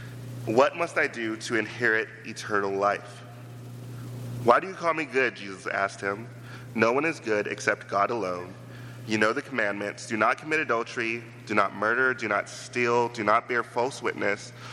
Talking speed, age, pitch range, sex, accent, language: 175 wpm, 30-49, 110-125 Hz, male, American, English